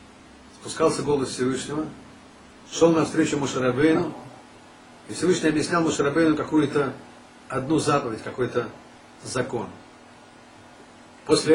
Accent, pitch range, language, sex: native, 130-170 Hz, Russian, male